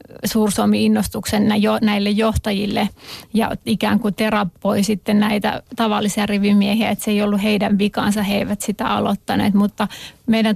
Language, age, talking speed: Finnish, 30-49, 135 wpm